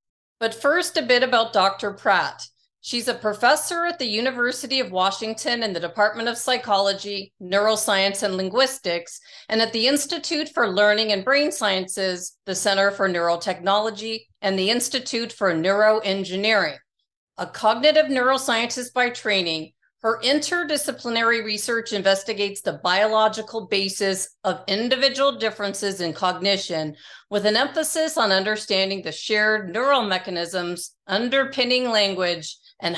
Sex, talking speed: female, 125 wpm